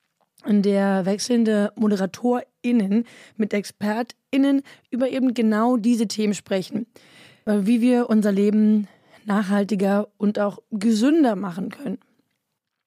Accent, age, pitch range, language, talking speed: German, 20-39, 205-240 Hz, German, 100 wpm